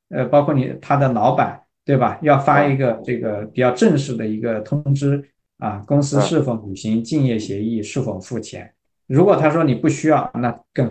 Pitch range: 120-165 Hz